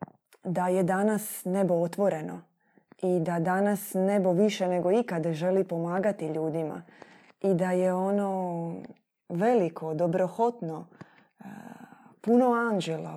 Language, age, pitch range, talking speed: Croatian, 20-39, 170-205 Hz, 105 wpm